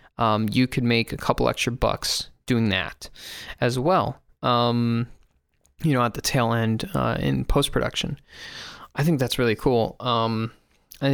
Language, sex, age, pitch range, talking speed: English, male, 20-39, 115-140 Hz, 155 wpm